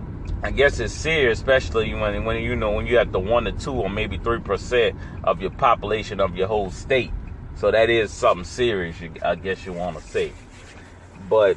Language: English